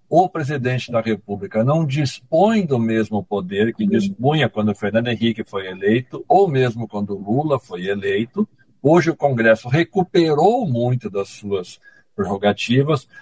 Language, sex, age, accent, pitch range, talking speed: Portuguese, male, 60-79, Brazilian, 110-170 Hz, 145 wpm